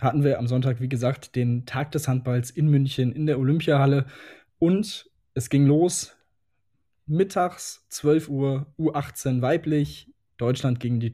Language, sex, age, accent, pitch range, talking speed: German, male, 20-39, German, 125-150 Hz, 150 wpm